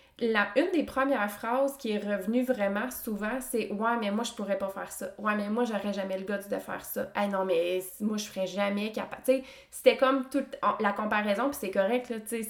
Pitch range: 200-260 Hz